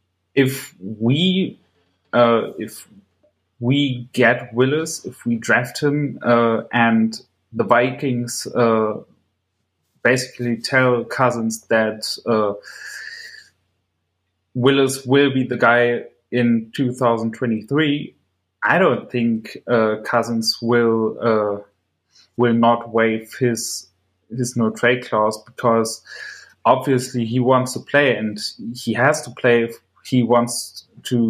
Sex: male